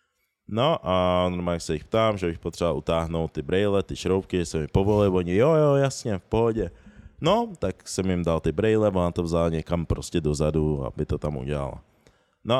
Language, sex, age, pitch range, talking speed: Czech, male, 20-39, 80-95 Hz, 200 wpm